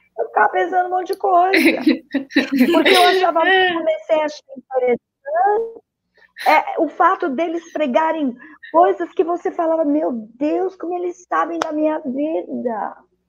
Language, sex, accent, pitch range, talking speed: Portuguese, female, Brazilian, 225-315 Hz, 140 wpm